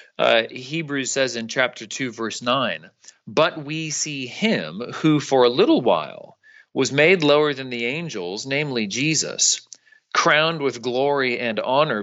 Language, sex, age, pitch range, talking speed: English, male, 30-49, 110-150 Hz, 150 wpm